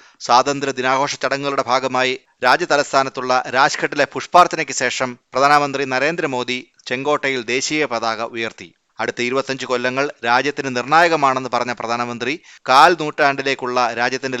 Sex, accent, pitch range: male, native, 120-145 Hz